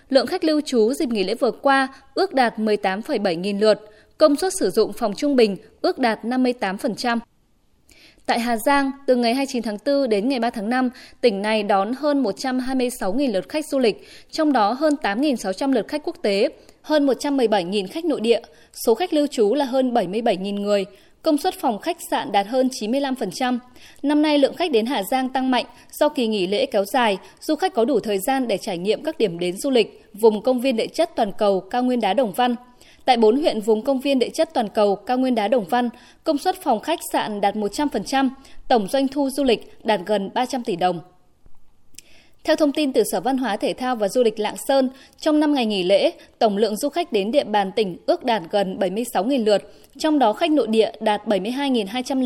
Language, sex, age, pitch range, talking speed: Vietnamese, female, 20-39, 215-280 Hz, 215 wpm